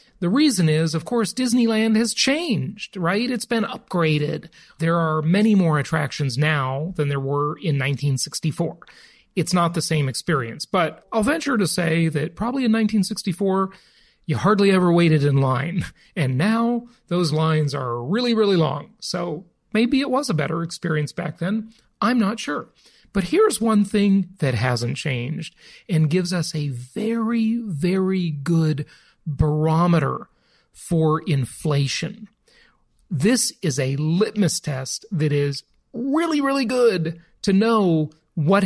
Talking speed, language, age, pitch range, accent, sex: 145 wpm, English, 40-59, 155-215 Hz, American, male